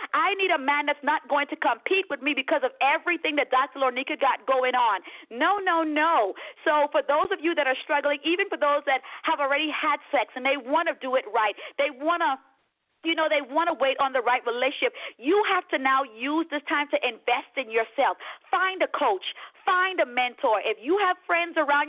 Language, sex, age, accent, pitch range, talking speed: English, female, 40-59, American, 260-345 Hz, 215 wpm